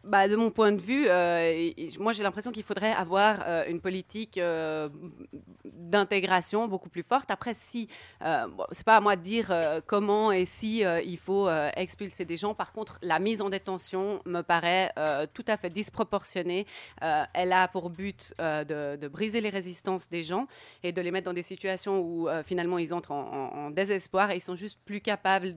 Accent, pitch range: French, 170-205 Hz